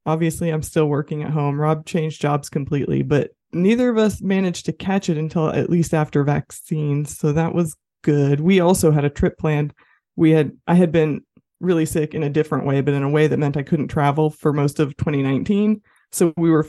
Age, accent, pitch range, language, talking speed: 20-39, American, 145-180 Hz, English, 215 wpm